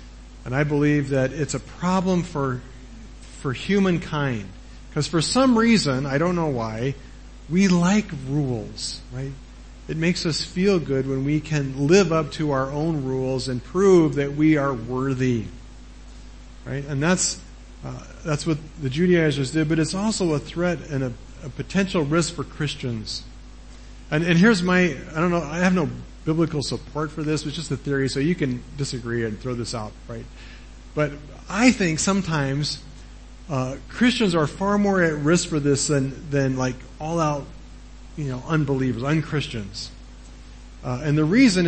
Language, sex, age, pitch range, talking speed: English, male, 50-69, 130-170 Hz, 165 wpm